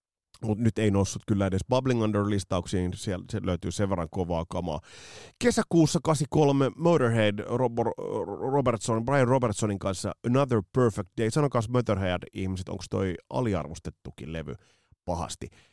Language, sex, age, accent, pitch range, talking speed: Finnish, male, 30-49, native, 90-130 Hz, 135 wpm